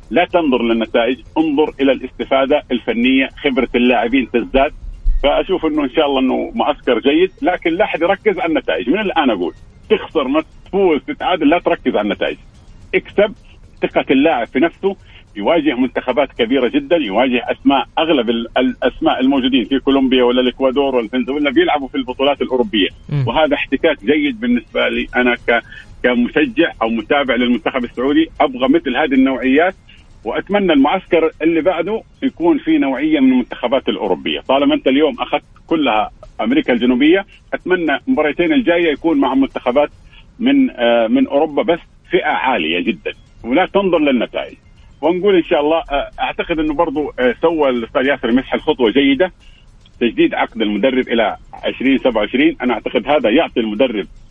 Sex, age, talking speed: male, 50-69, 140 wpm